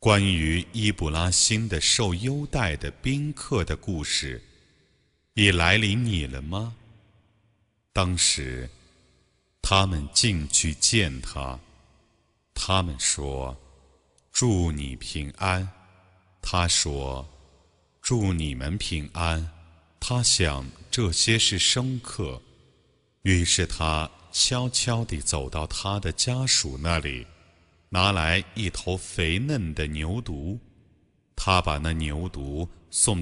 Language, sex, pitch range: Chinese, male, 75-105 Hz